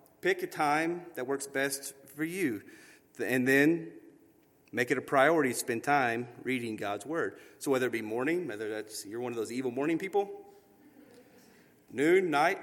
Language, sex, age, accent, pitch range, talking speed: English, male, 30-49, American, 120-150 Hz, 170 wpm